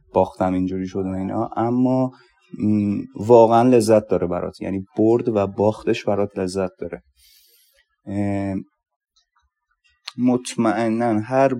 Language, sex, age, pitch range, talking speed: Persian, male, 20-39, 95-115 Hz, 100 wpm